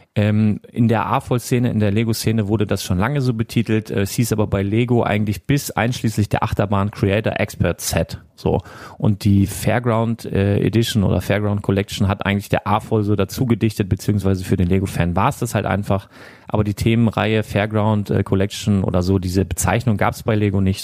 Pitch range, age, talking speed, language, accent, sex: 100-120 Hz, 30-49, 185 wpm, German, German, male